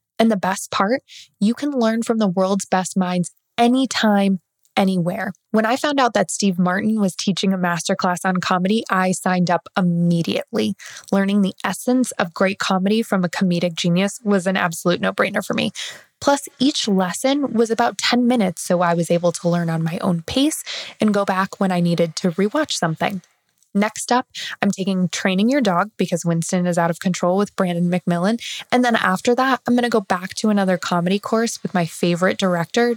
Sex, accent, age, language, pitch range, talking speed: female, American, 20-39, English, 180-225 Hz, 195 wpm